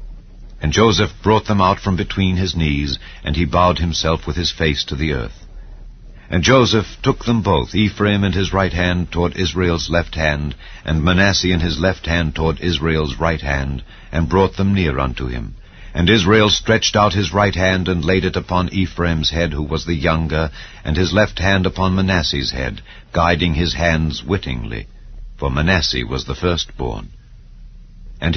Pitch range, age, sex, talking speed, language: 80-95 Hz, 60-79, male, 175 wpm, English